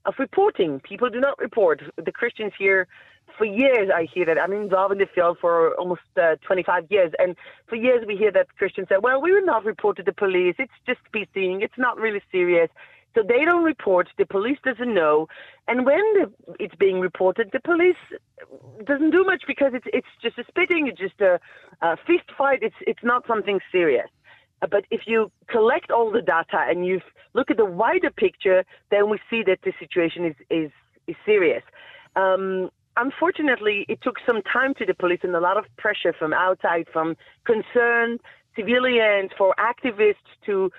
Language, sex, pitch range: English, female, 185-270 Hz